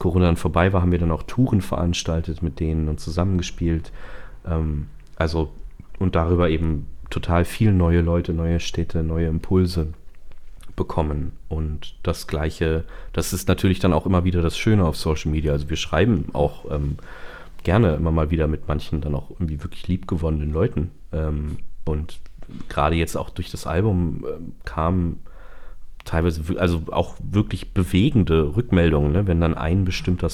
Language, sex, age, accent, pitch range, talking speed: German, male, 40-59, German, 80-90 Hz, 155 wpm